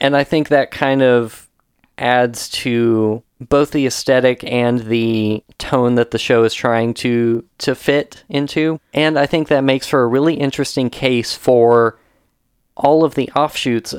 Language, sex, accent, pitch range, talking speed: English, male, American, 120-140 Hz, 165 wpm